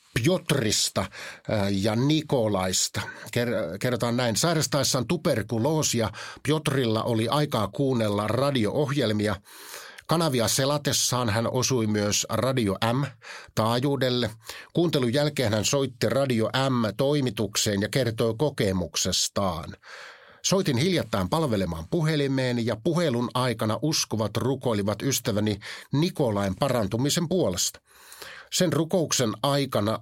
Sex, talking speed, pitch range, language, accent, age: male, 90 wpm, 110-145 Hz, Finnish, native, 50-69